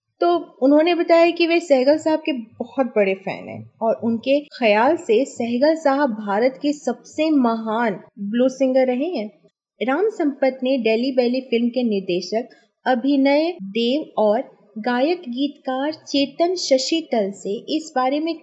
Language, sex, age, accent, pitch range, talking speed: Hindi, female, 30-49, native, 225-305 Hz, 150 wpm